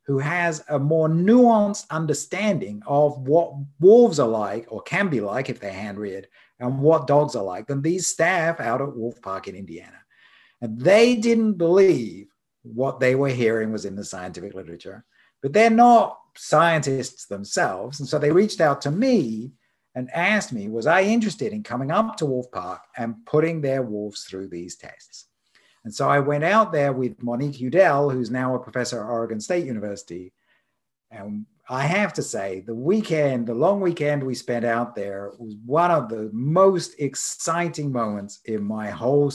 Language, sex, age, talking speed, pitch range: English, male, 50-69, 180 wpm, 110-165 Hz